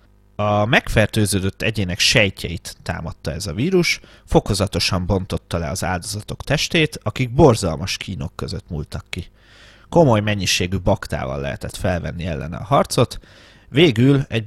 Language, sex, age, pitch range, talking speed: Hungarian, male, 30-49, 90-115 Hz, 125 wpm